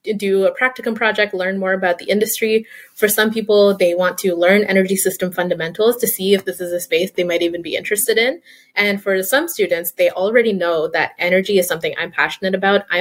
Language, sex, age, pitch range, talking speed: English, female, 20-39, 175-210 Hz, 215 wpm